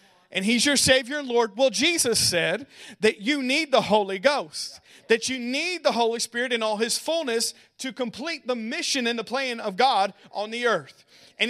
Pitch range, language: 200-255 Hz, English